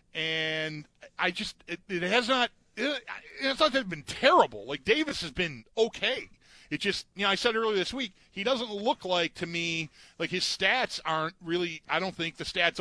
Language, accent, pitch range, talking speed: English, American, 145-185 Hz, 185 wpm